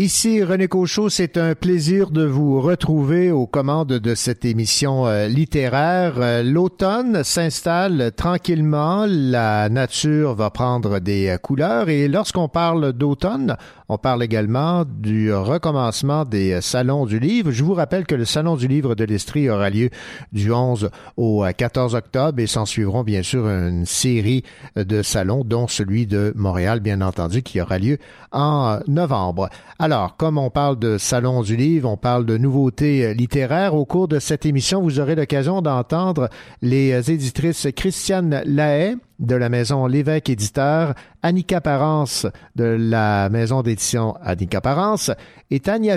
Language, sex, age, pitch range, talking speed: French, male, 50-69, 120-165 Hz, 150 wpm